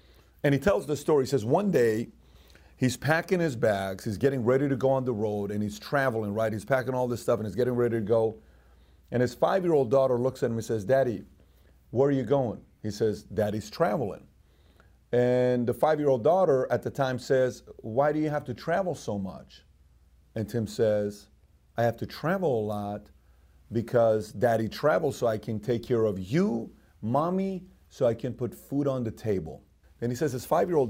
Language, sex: English, male